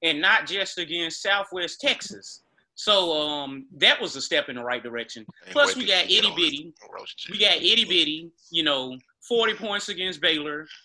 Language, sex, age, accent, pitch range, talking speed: English, male, 30-49, American, 145-195 Hz, 160 wpm